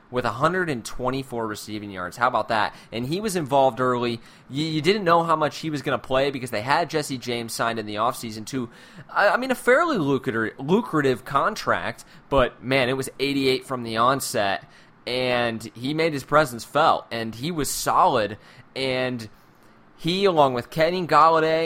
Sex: male